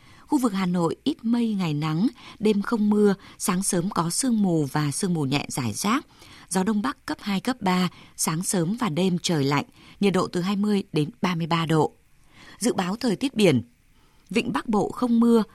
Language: Vietnamese